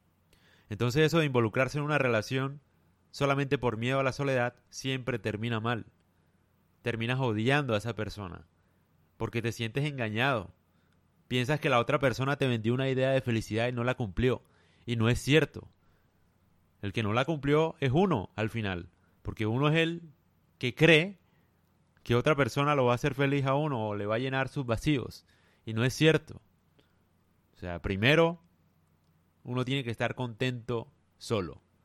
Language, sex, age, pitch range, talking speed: Spanish, male, 30-49, 90-135 Hz, 170 wpm